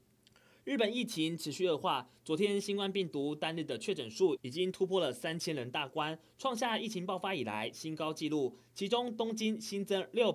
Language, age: Chinese, 20-39